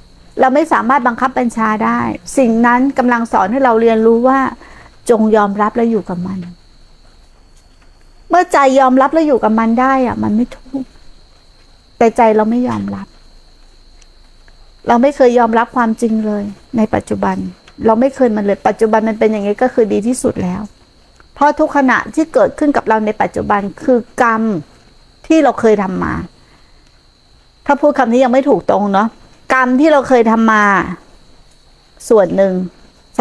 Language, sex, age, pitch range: Thai, female, 60-79, 210-260 Hz